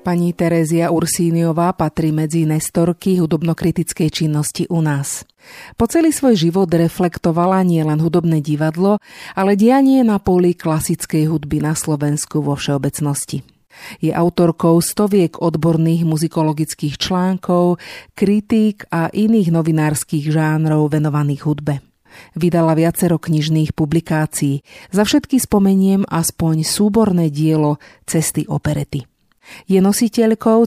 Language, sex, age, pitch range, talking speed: Slovak, female, 40-59, 155-190 Hz, 110 wpm